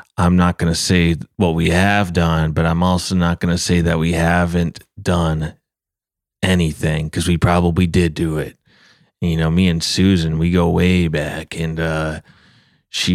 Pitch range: 80-90 Hz